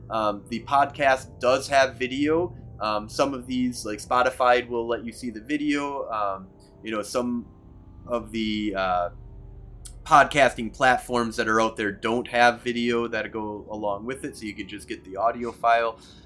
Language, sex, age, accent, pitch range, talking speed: English, male, 30-49, American, 105-140 Hz, 175 wpm